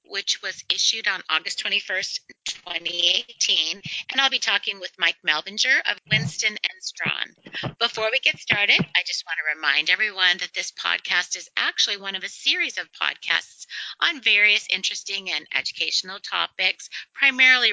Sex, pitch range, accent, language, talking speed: female, 175-225 Hz, American, English, 155 wpm